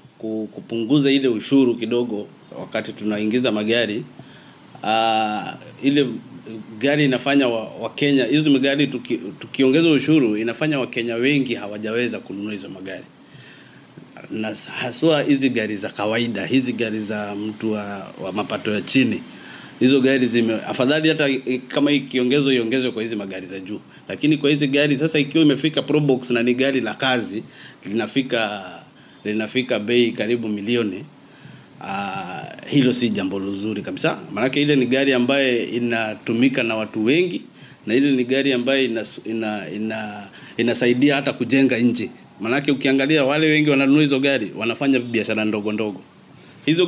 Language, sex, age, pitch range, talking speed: Swahili, male, 30-49, 110-140 Hz, 140 wpm